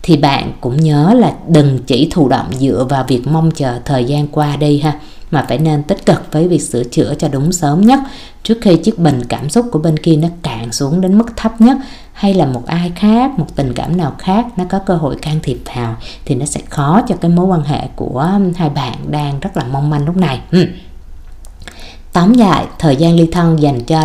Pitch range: 130-175 Hz